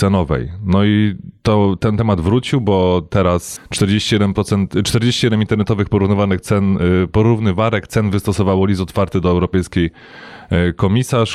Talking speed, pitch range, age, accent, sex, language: 105 wpm, 90-110 Hz, 20-39, native, male, Polish